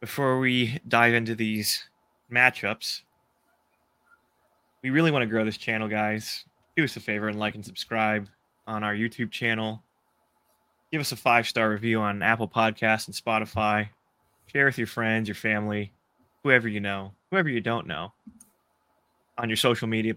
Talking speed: 160 wpm